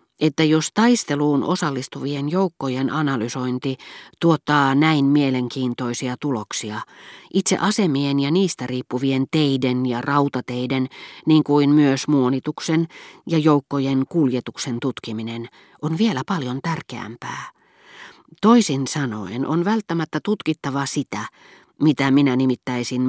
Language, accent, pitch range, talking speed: Finnish, native, 120-160 Hz, 100 wpm